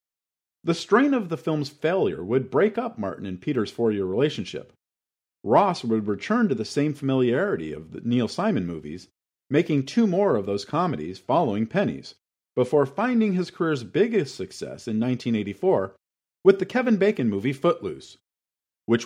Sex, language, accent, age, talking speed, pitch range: male, English, American, 40-59, 155 wpm, 110-180 Hz